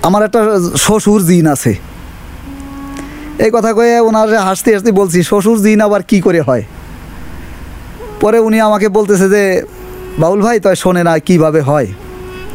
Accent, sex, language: Indian, male, English